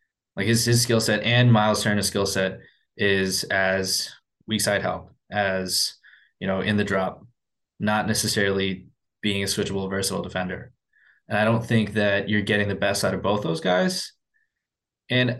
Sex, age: male, 20-39